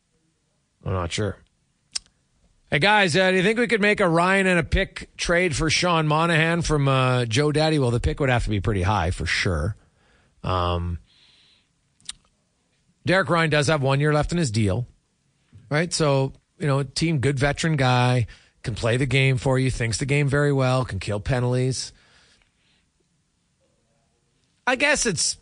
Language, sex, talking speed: English, male, 170 wpm